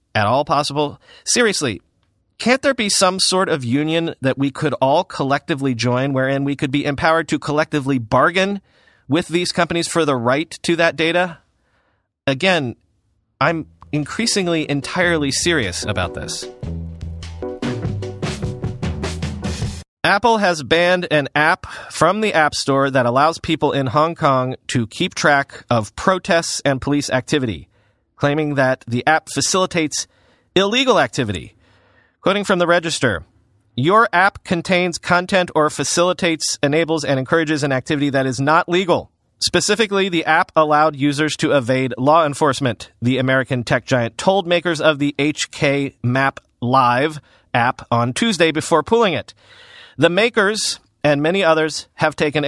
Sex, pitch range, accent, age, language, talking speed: male, 130-175 Hz, American, 30-49, English, 140 wpm